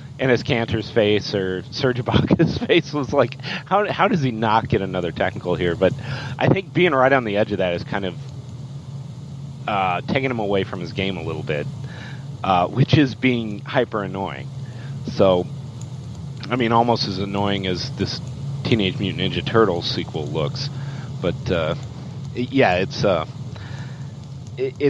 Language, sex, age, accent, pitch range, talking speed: English, male, 40-59, American, 115-140 Hz, 160 wpm